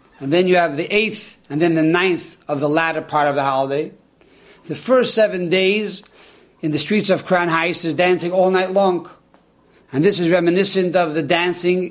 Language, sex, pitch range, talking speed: English, male, 160-210 Hz, 195 wpm